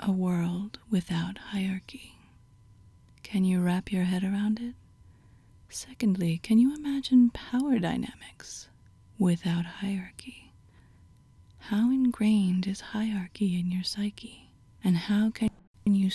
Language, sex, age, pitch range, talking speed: English, female, 30-49, 175-215 Hz, 110 wpm